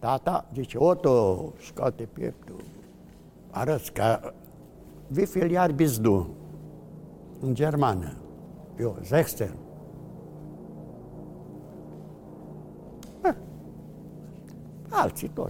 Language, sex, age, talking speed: Romanian, male, 60-79, 60 wpm